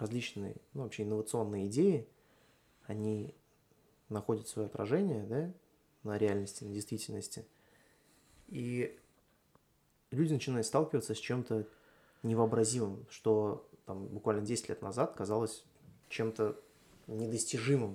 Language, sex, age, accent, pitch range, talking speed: Russian, male, 20-39, native, 100-115 Hz, 100 wpm